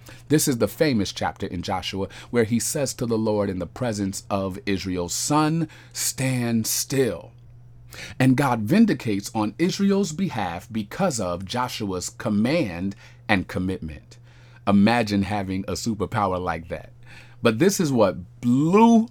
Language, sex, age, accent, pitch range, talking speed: English, male, 40-59, American, 100-140 Hz, 140 wpm